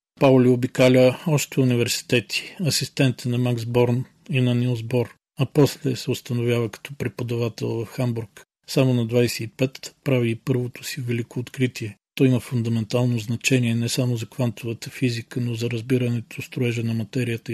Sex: male